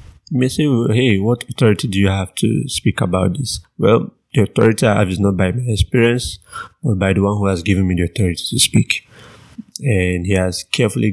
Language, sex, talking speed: English, male, 210 wpm